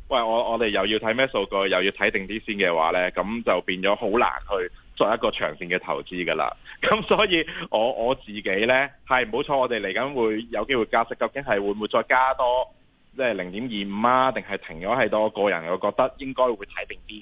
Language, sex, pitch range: Chinese, male, 95-125 Hz